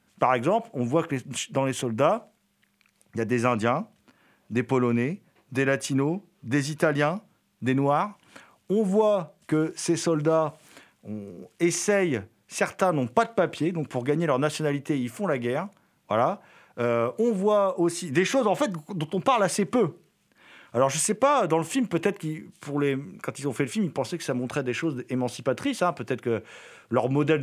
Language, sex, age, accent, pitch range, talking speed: French, male, 50-69, French, 135-190 Hz, 185 wpm